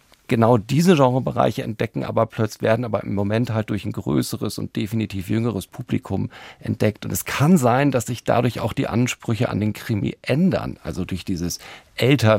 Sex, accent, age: male, German, 40-59